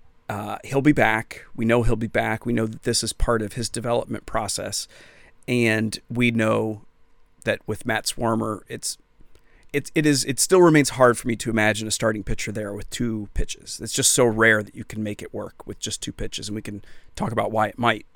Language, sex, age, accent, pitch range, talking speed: English, male, 30-49, American, 110-140 Hz, 220 wpm